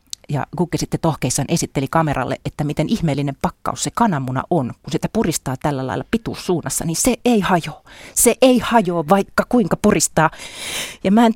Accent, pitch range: native, 140-185 Hz